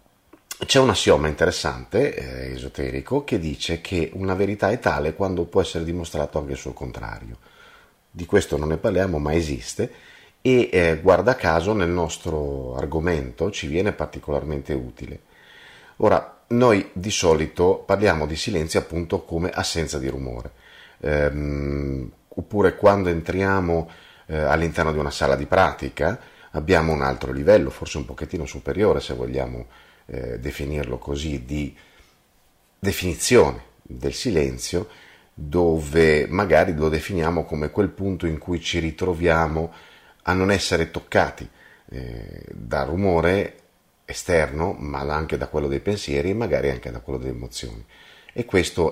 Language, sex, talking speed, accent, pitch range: Italian, male, 140 wpm, native, 70-95 Hz